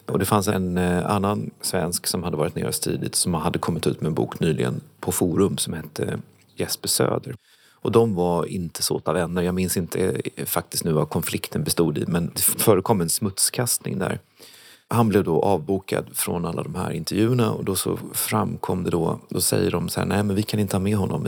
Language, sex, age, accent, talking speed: Swedish, male, 30-49, native, 210 wpm